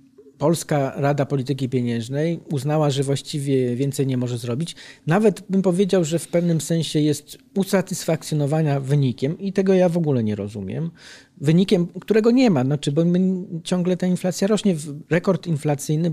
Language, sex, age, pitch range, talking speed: Polish, male, 40-59, 130-175 Hz, 155 wpm